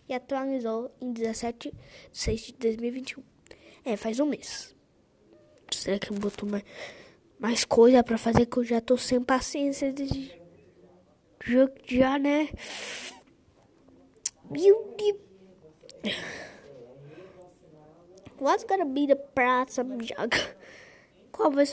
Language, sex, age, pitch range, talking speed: Portuguese, female, 10-29, 240-305 Hz, 100 wpm